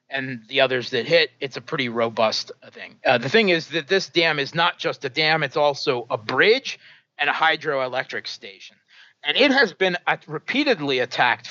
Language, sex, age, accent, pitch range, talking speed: English, male, 30-49, American, 125-160 Hz, 190 wpm